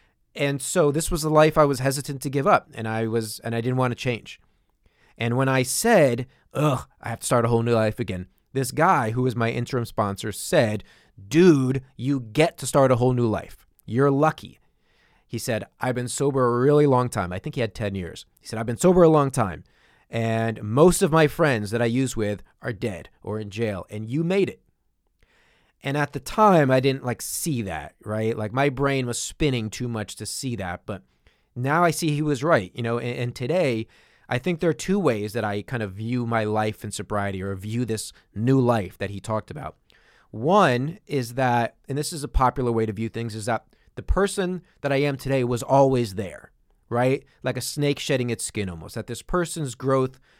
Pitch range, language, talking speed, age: 110-140 Hz, English, 220 wpm, 30-49